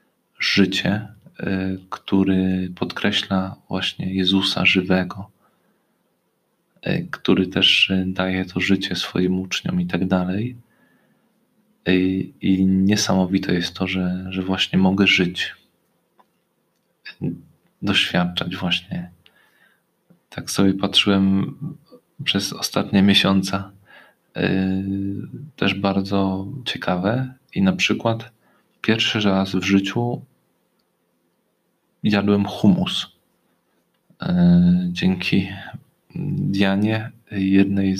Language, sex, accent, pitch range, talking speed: Polish, male, native, 95-105 Hz, 75 wpm